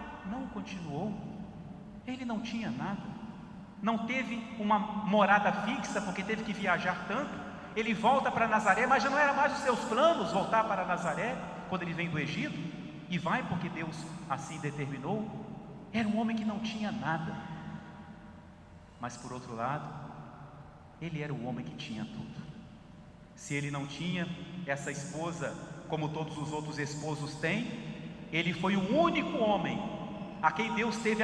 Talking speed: 160 wpm